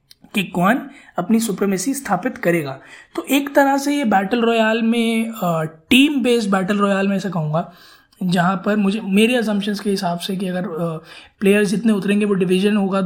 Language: Hindi